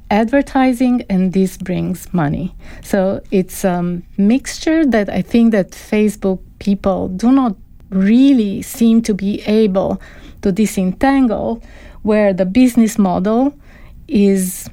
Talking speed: 120 wpm